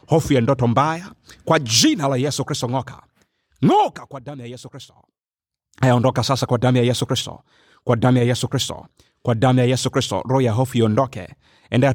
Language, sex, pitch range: Swahili, male, 120-135 Hz